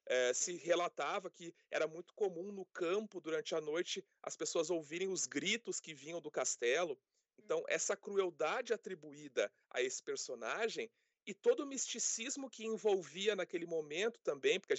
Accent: Brazilian